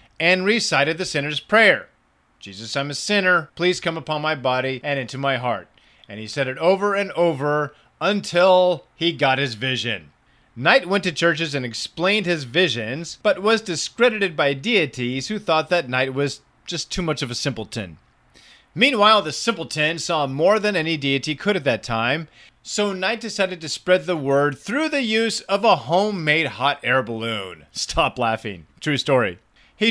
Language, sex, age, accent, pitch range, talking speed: English, male, 30-49, American, 130-180 Hz, 175 wpm